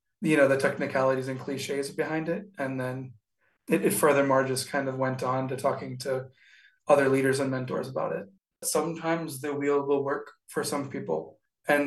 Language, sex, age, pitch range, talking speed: English, male, 20-39, 135-155 Hz, 180 wpm